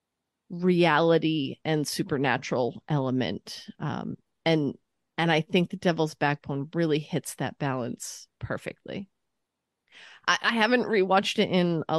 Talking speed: 120 wpm